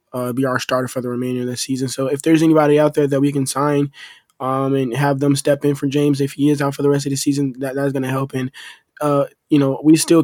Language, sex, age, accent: English, male, 20-39, American